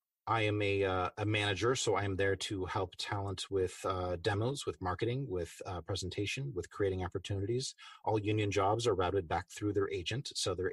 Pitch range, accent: 90-115 Hz, American